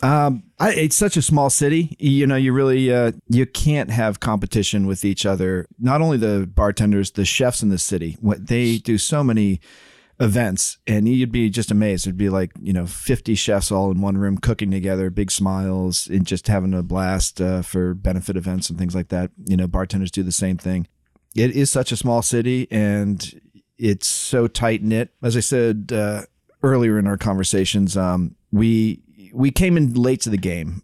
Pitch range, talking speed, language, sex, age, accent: 90-110 Hz, 200 wpm, English, male, 40-59, American